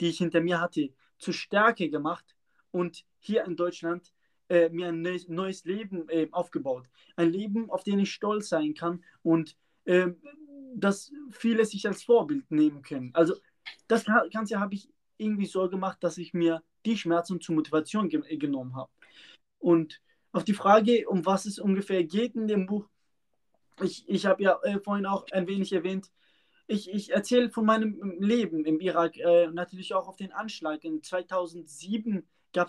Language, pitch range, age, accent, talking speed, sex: English, 170-205 Hz, 20-39, German, 170 wpm, male